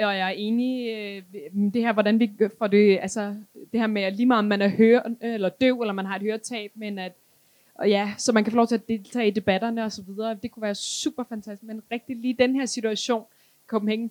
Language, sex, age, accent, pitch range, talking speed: Danish, female, 20-39, native, 205-240 Hz, 245 wpm